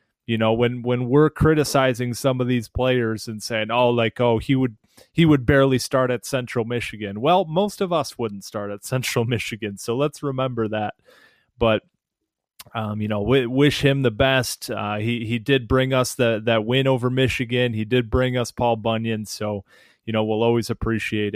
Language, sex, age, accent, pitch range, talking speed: English, male, 30-49, American, 110-130 Hz, 195 wpm